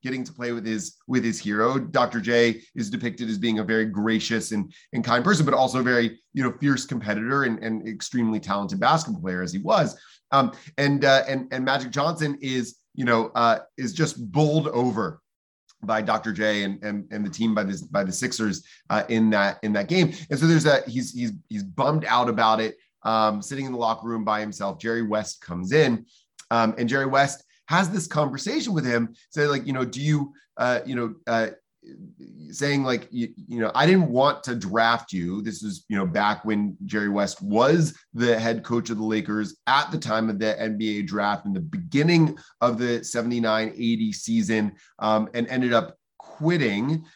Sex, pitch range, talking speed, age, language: male, 110-140 Hz, 205 wpm, 30-49, English